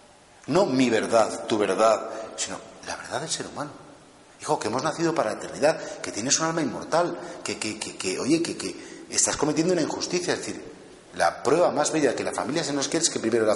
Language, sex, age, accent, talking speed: Spanish, male, 40-59, Spanish, 225 wpm